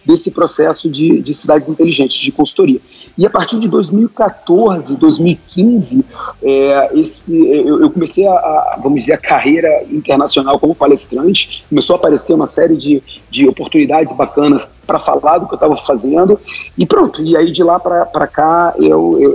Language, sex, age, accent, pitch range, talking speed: Portuguese, male, 40-59, Brazilian, 150-220 Hz, 150 wpm